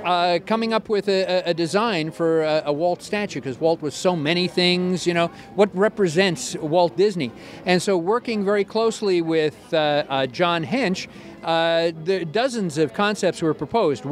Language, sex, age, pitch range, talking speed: English, male, 50-69, 160-195 Hz, 175 wpm